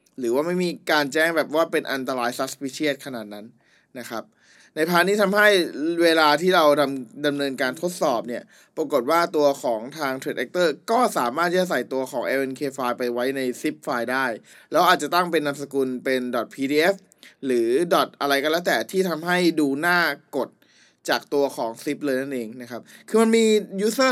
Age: 20-39